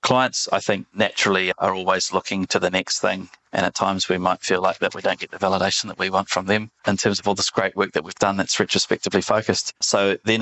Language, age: English, 20-39